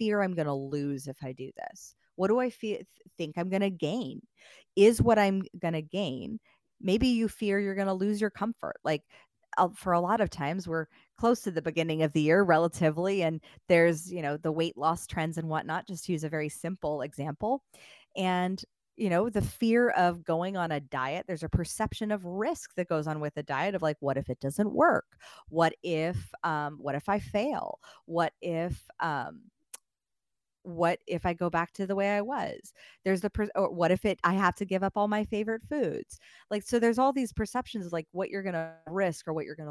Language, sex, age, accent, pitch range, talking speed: English, female, 30-49, American, 160-215 Hz, 220 wpm